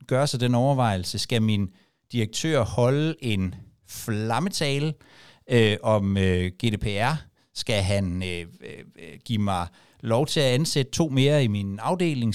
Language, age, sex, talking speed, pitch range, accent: Danish, 60-79, male, 140 wpm, 105-135 Hz, native